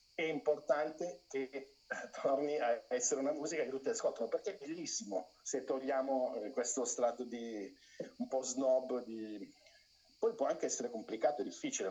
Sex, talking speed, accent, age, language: male, 150 wpm, native, 50-69, Italian